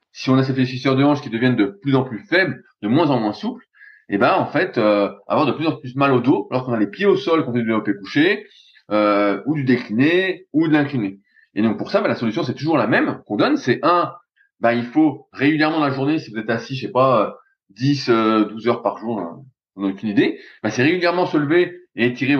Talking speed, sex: 255 wpm, male